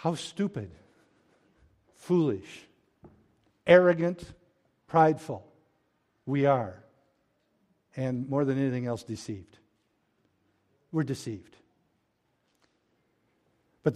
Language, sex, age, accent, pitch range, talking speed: English, male, 60-79, American, 140-185 Hz, 70 wpm